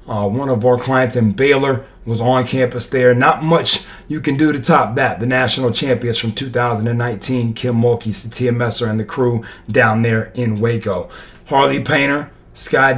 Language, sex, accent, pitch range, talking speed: English, male, American, 120-145 Hz, 175 wpm